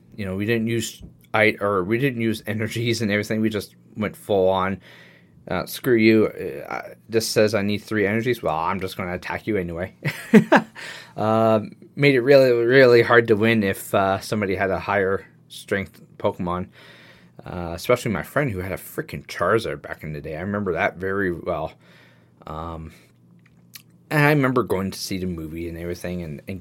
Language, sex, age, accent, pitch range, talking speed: English, male, 20-39, American, 85-110 Hz, 185 wpm